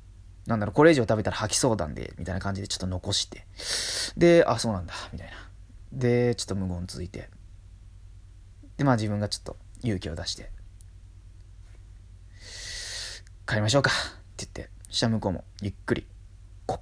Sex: male